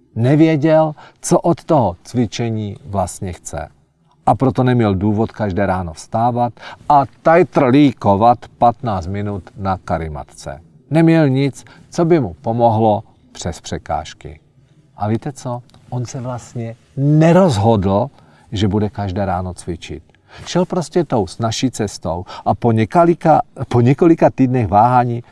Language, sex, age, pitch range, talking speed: Czech, male, 40-59, 105-150 Hz, 125 wpm